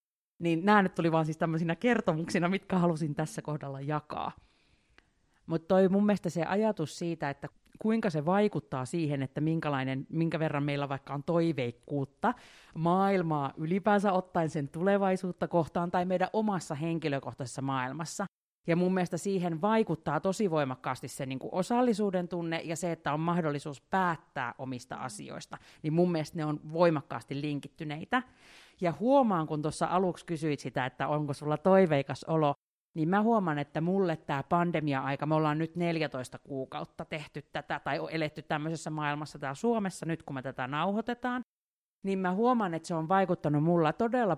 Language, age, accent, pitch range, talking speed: Finnish, 30-49, native, 145-185 Hz, 155 wpm